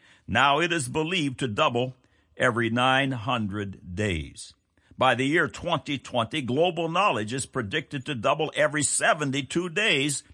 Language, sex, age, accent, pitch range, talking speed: English, male, 60-79, American, 100-140 Hz, 130 wpm